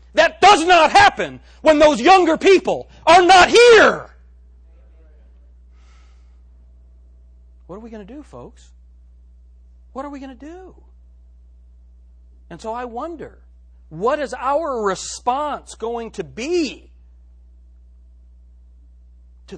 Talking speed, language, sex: 110 wpm, English, male